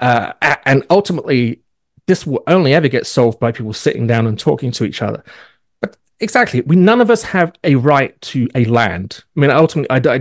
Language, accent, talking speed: English, British, 205 wpm